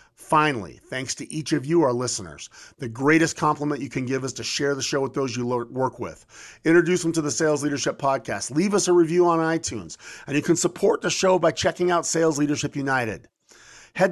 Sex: male